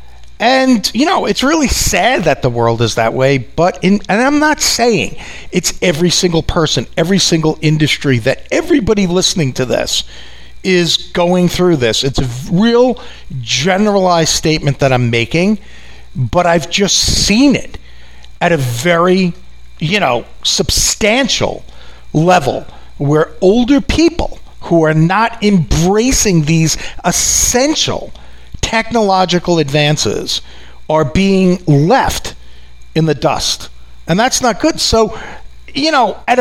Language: English